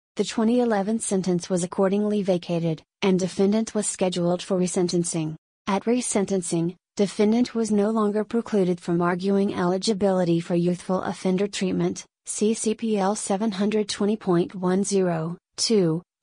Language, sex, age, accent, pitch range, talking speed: English, female, 30-49, American, 180-205 Hz, 105 wpm